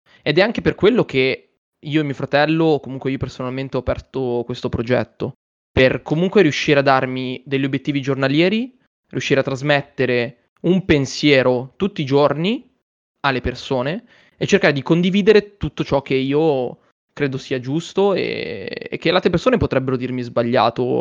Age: 20-39